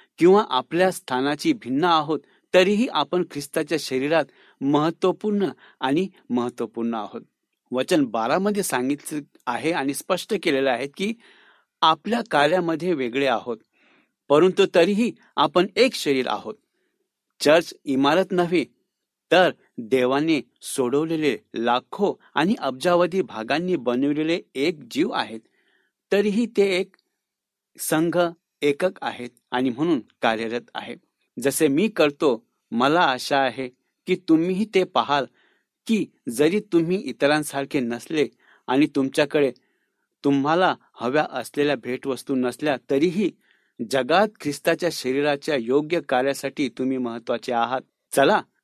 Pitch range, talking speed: 135-185 Hz, 110 wpm